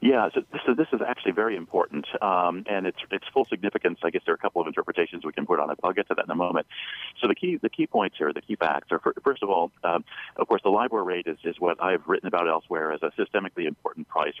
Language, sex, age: English, male, 40-59